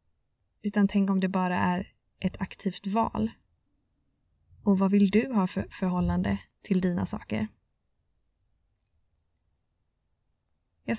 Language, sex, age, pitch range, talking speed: Swedish, female, 20-39, 185-210 Hz, 110 wpm